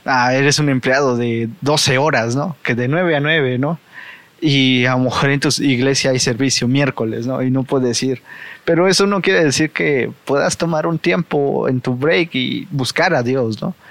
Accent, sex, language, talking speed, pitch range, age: Mexican, male, Spanish, 205 wpm, 120-145 Hz, 20-39